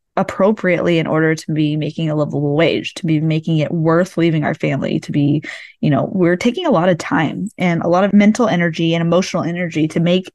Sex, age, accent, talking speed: female, 20-39, American, 220 wpm